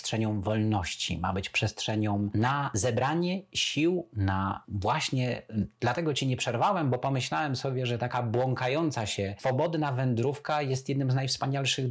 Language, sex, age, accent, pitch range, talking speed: Polish, male, 30-49, native, 110-135 Hz, 135 wpm